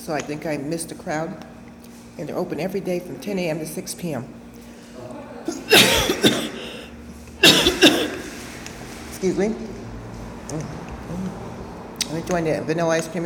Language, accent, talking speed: English, American, 120 wpm